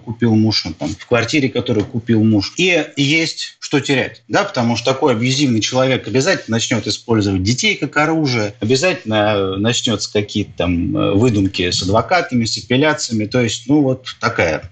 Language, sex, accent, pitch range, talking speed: Russian, male, native, 105-145 Hz, 150 wpm